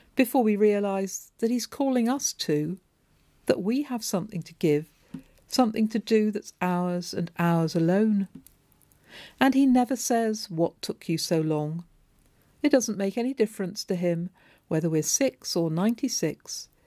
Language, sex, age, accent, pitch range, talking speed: English, female, 50-69, British, 165-220 Hz, 155 wpm